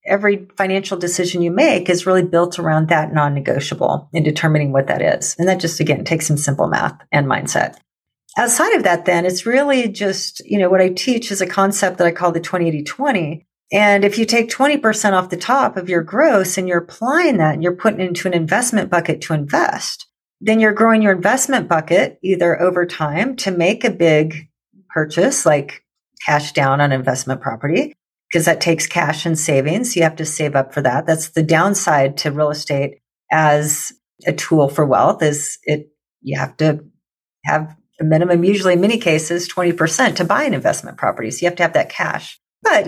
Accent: American